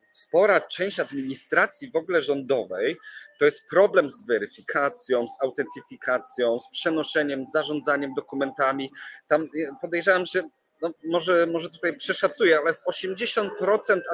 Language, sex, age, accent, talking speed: Polish, male, 40-59, native, 115 wpm